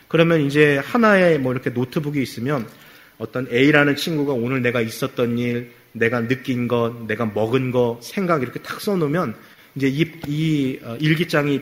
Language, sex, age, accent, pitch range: Korean, male, 30-49, native, 120-165 Hz